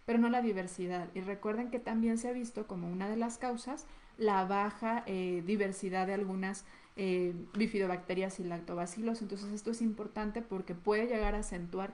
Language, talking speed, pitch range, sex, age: Spanish, 175 wpm, 180-225 Hz, female, 30-49